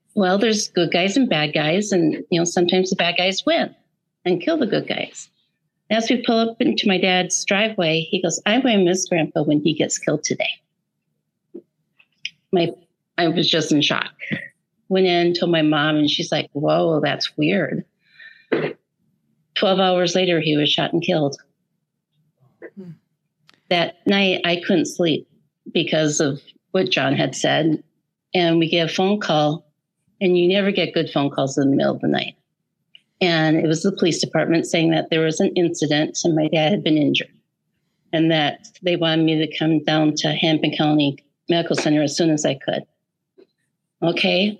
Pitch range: 155-185 Hz